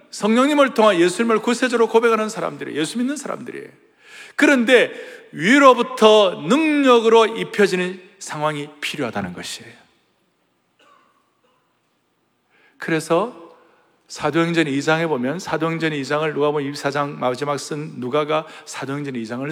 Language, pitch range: Korean, 155-250 Hz